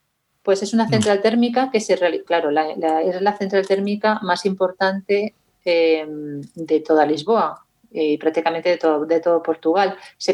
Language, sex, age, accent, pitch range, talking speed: Spanish, female, 40-59, Spanish, 170-210 Hz, 155 wpm